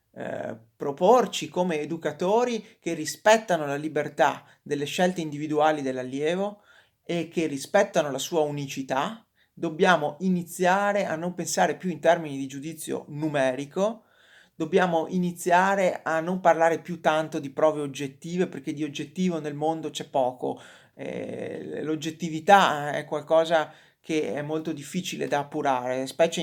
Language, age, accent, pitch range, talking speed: Italian, 30-49, native, 140-170 Hz, 125 wpm